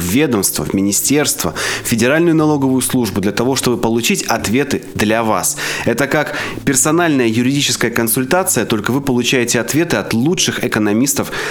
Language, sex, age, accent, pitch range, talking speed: Russian, male, 20-39, native, 105-125 Hz, 140 wpm